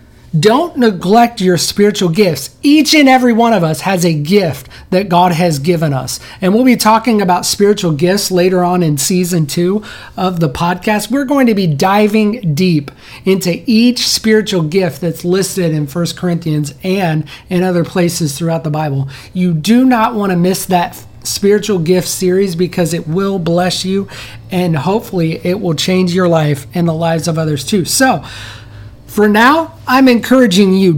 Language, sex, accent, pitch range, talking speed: English, male, American, 165-215 Hz, 175 wpm